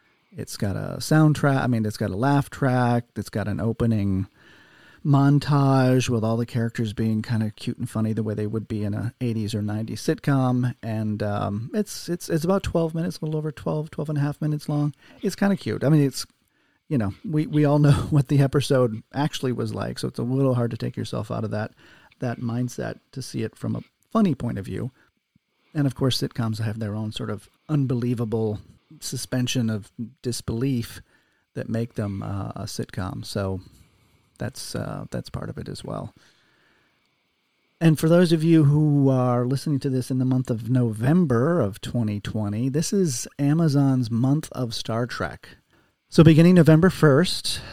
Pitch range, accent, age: 115-145 Hz, American, 40-59